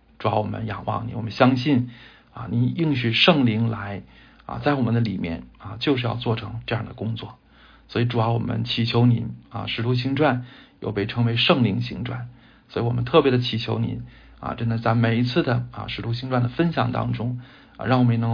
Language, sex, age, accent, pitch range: Chinese, male, 50-69, native, 115-125 Hz